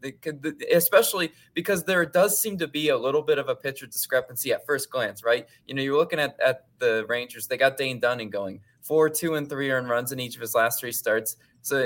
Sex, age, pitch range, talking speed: male, 20-39, 120-160 Hz, 235 wpm